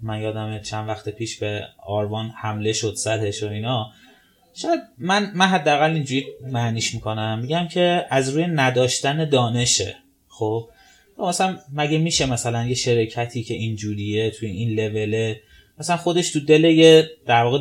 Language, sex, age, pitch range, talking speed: Persian, male, 20-39, 115-160 Hz, 145 wpm